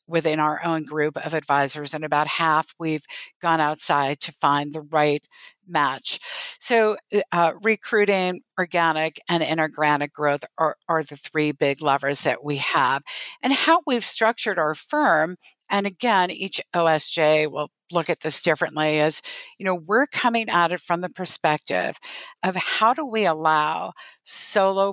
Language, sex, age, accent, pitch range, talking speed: English, female, 50-69, American, 150-185 Hz, 155 wpm